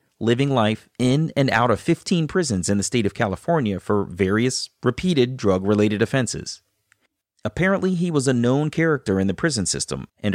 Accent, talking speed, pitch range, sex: American, 170 wpm, 100-145 Hz, male